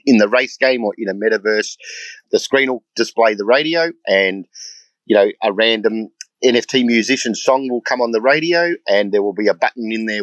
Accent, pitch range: Australian, 105-130 Hz